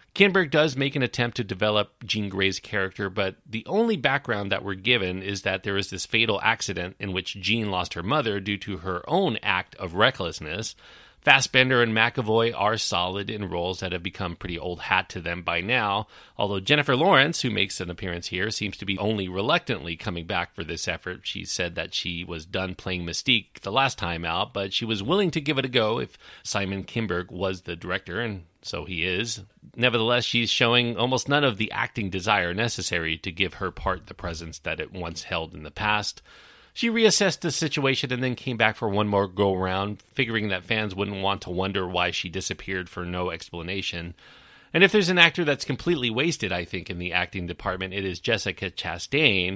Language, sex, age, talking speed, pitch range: English, male, 40-59, 205 wpm, 90-120 Hz